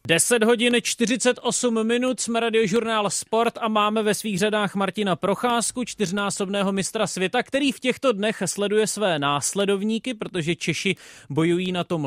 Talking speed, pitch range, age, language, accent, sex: 145 wpm, 175-215 Hz, 30-49, Czech, native, male